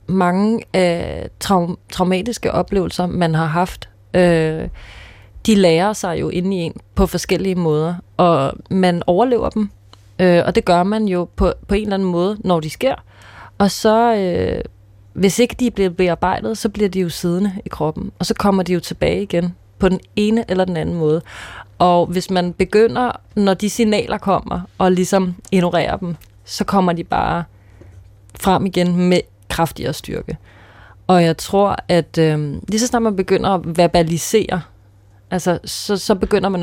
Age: 30-49